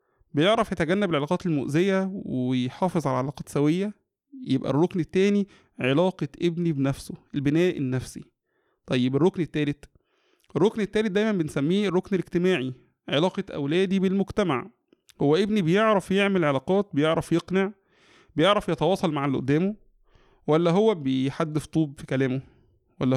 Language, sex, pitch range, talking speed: Arabic, male, 140-190 Hz, 120 wpm